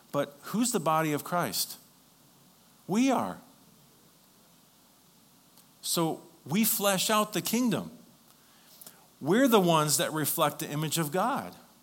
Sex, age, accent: male, 50-69, American